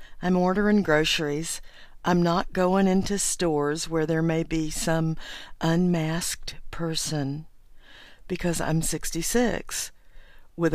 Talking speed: 105 wpm